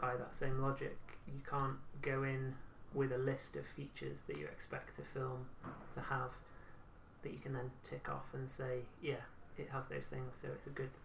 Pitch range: 115-140 Hz